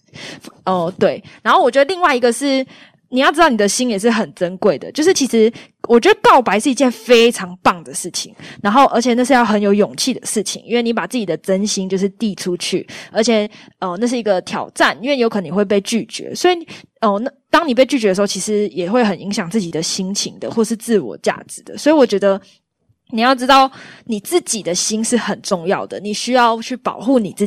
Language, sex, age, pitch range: Chinese, female, 20-39, 205-295 Hz